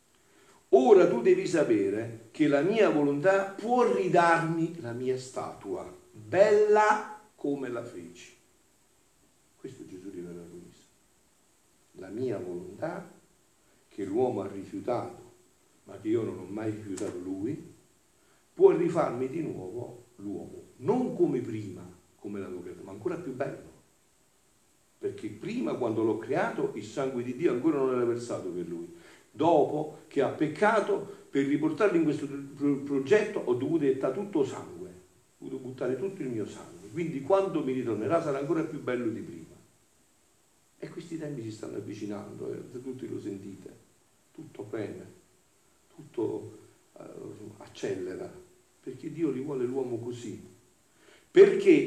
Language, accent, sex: Italian, native, male